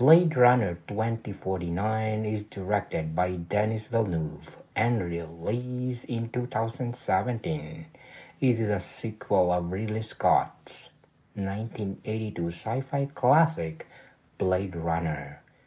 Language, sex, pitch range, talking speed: English, male, 90-125 Hz, 90 wpm